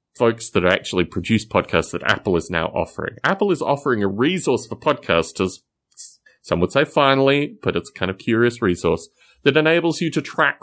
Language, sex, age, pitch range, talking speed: English, male, 30-49, 105-160 Hz, 185 wpm